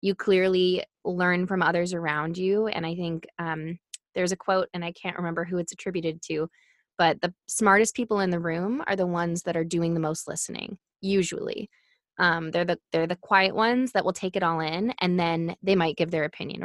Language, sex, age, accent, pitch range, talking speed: English, female, 20-39, American, 165-210 Hz, 215 wpm